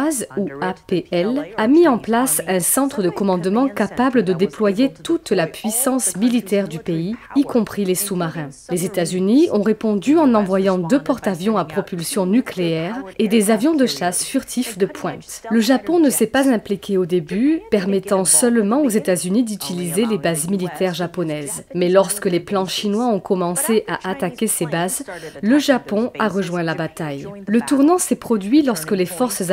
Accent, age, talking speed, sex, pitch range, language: French, 30-49, 170 wpm, female, 180-240 Hz, French